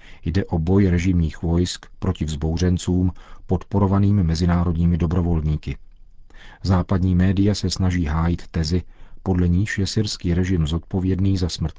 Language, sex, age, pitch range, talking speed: Czech, male, 40-59, 85-95 Hz, 120 wpm